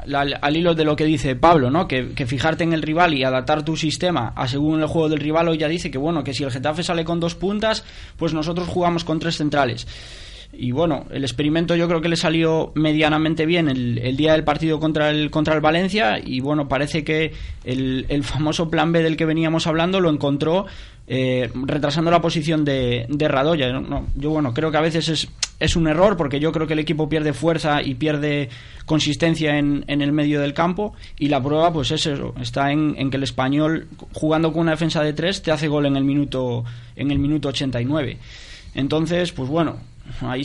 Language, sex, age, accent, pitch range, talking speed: Spanish, male, 20-39, Spanish, 135-165 Hz, 215 wpm